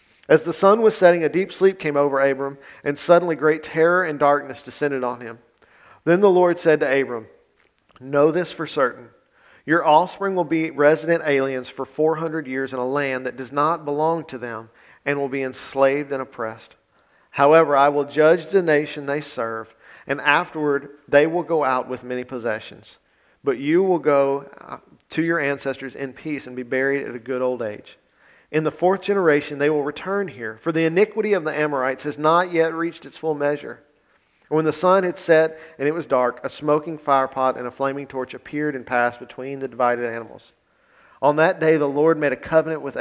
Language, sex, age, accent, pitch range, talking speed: English, male, 50-69, American, 130-160 Hz, 195 wpm